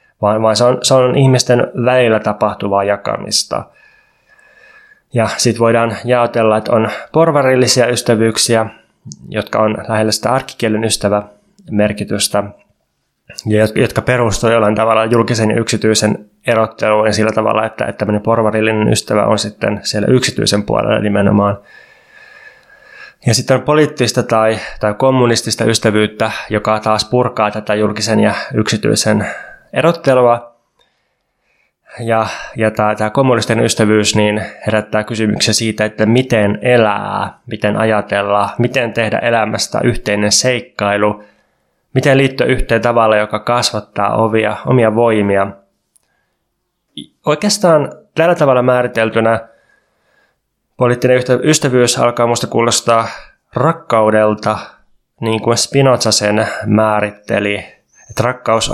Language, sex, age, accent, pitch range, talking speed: Finnish, male, 20-39, native, 105-125 Hz, 105 wpm